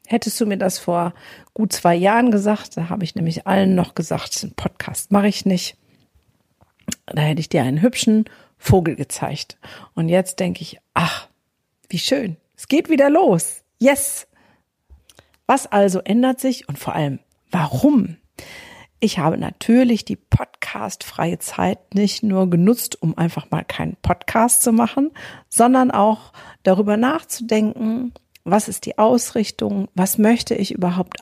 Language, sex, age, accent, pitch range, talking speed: German, female, 50-69, German, 180-230 Hz, 150 wpm